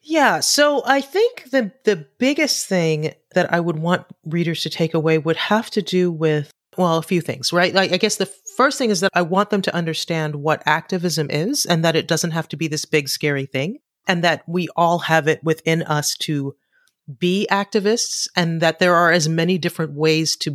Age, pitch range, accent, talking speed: 30-49, 155-190 Hz, American, 215 wpm